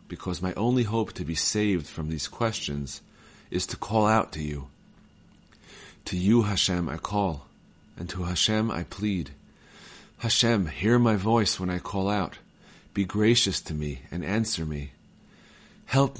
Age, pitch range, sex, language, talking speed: 40-59, 85-105 Hz, male, English, 155 wpm